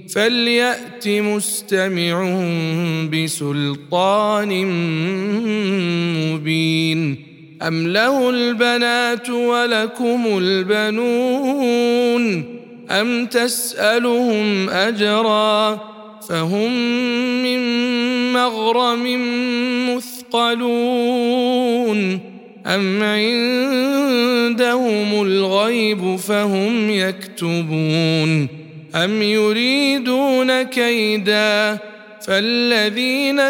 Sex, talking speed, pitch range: male, 45 wpm, 185-240 Hz